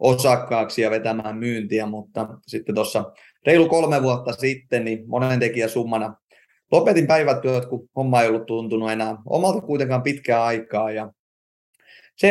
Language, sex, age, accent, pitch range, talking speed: Finnish, male, 30-49, native, 115-140 Hz, 135 wpm